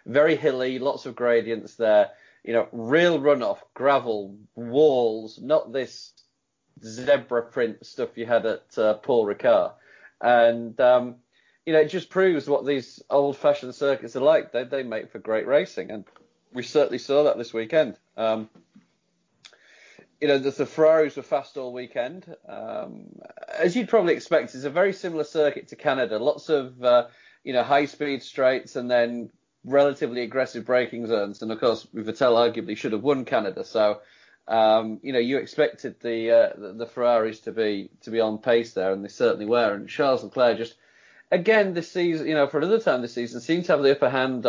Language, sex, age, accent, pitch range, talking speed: English, male, 30-49, British, 115-145 Hz, 180 wpm